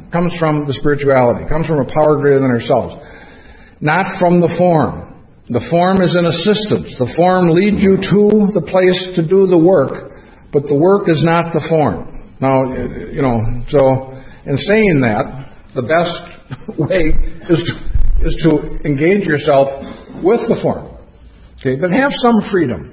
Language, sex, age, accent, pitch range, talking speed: English, male, 60-79, American, 130-170 Hz, 160 wpm